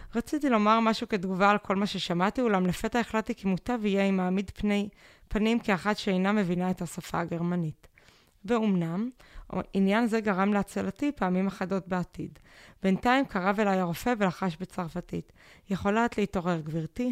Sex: female